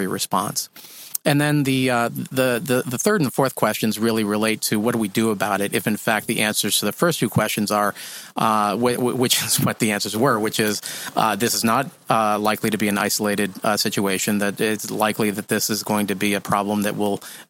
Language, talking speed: English, 235 wpm